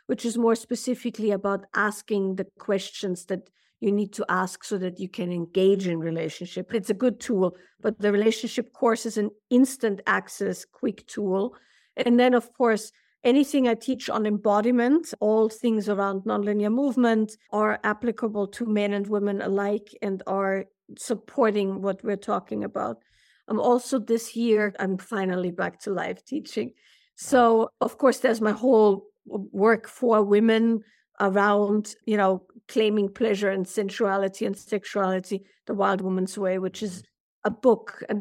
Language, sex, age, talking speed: English, female, 50-69, 155 wpm